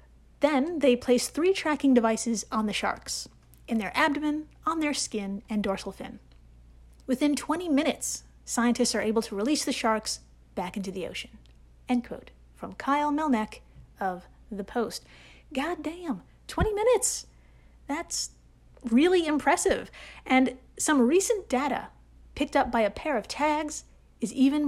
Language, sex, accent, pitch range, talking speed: English, female, American, 225-310 Hz, 145 wpm